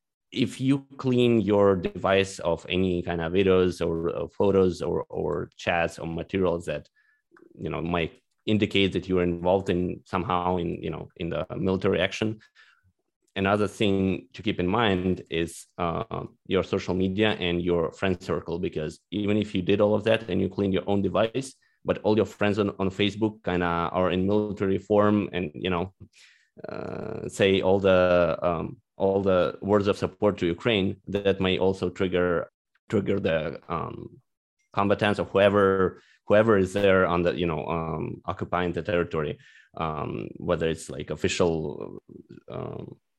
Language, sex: Ukrainian, male